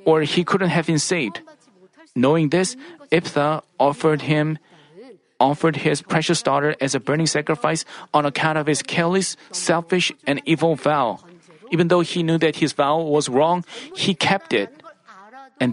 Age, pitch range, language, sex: 40-59, 145-175 Hz, Korean, male